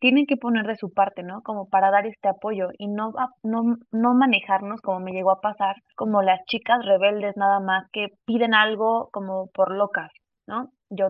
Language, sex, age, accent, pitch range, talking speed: Spanish, female, 20-39, Mexican, 195-235 Hz, 195 wpm